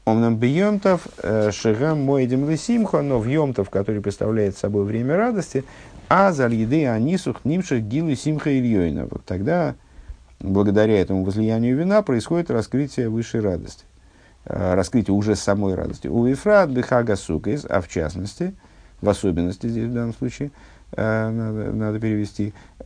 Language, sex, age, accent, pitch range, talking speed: Russian, male, 50-69, native, 95-125 Hz, 120 wpm